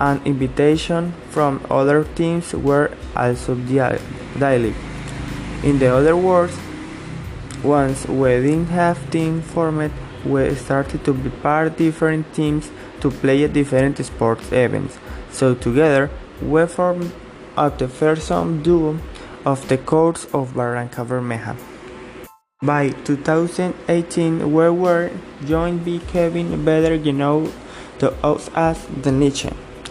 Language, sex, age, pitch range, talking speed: English, male, 20-39, 135-165 Hz, 120 wpm